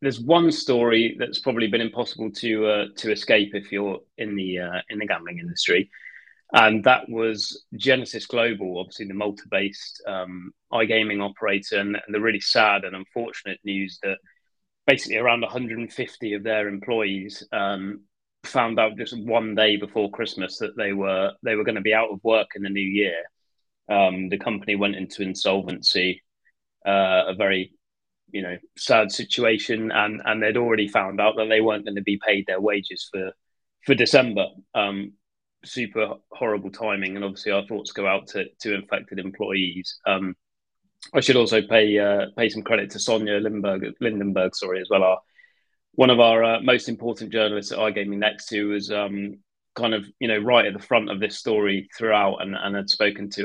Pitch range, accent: 100-115 Hz, British